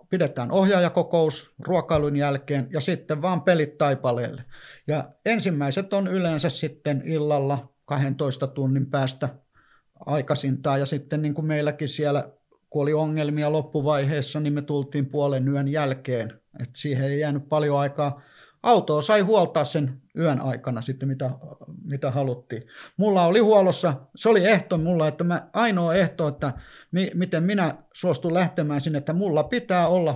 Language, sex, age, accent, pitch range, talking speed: Finnish, male, 50-69, native, 140-165 Hz, 145 wpm